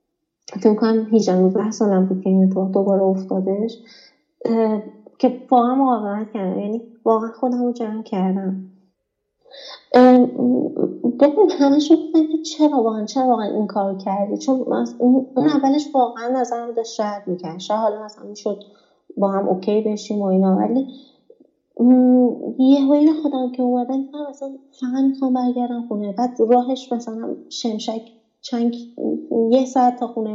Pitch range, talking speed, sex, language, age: 200-255 Hz, 140 wpm, female, Persian, 30-49